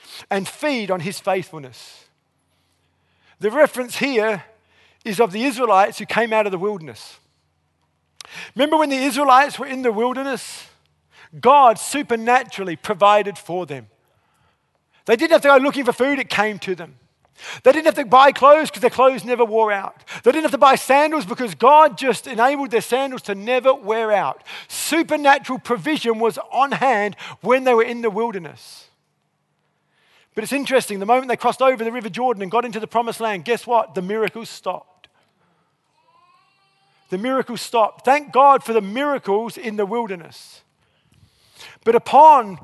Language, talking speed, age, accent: English, 165 wpm, 40-59, Australian